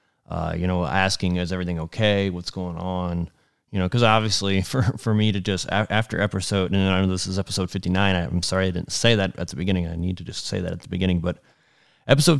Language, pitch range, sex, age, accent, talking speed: English, 90-105 Hz, male, 30-49, American, 235 wpm